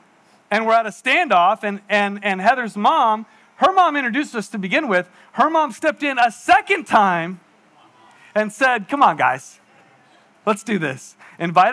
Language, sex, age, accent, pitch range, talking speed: English, male, 40-59, American, 195-285 Hz, 170 wpm